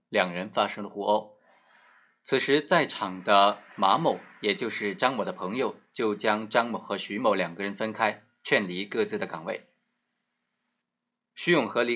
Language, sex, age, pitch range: Chinese, male, 20-39, 100-140 Hz